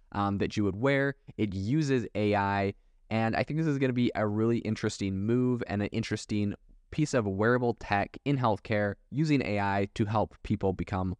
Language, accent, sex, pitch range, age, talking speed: English, American, male, 95-120 Hz, 20-39, 190 wpm